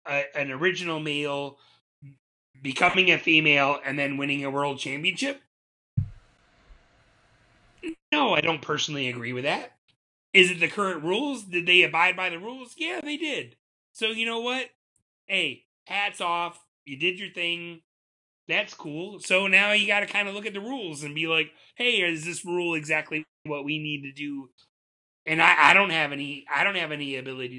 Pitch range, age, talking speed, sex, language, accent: 135-185 Hz, 30-49, 180 wpm, male, English, American